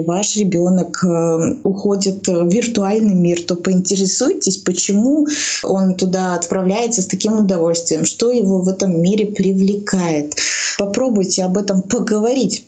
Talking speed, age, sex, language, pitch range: 120 wpm, 20-39, female, Russian, 185-225 Hz